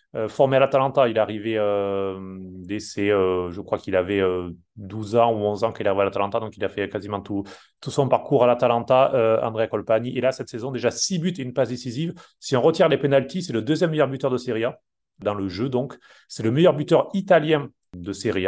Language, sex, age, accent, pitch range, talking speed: French, male, 30-49, French, 110-135 Hz, 235 wpm